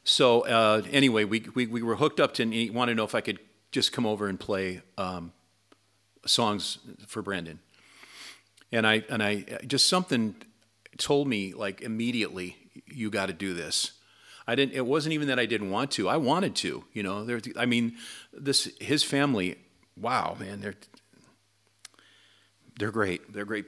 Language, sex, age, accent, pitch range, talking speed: English, male, 40-59, American, 95-120 Hz, 175 wpm